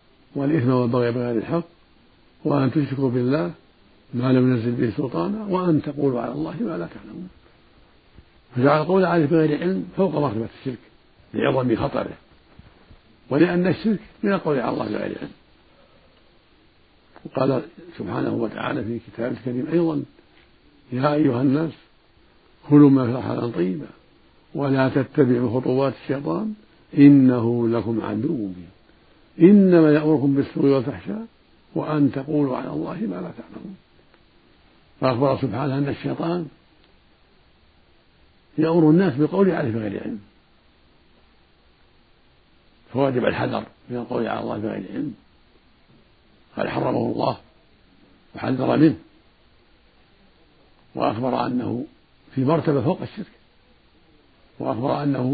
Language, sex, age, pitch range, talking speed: Arabic, male, 60-79, 120-155 Hz, 110 wpm